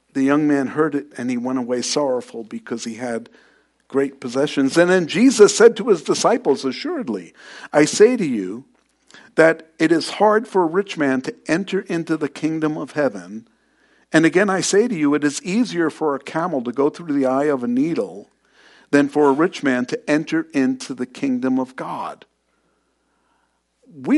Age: 50-69